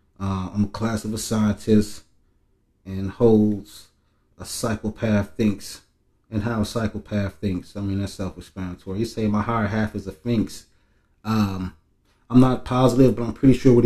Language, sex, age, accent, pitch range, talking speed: English, male, 30-49, American, 100-110 Hz, 165 wpm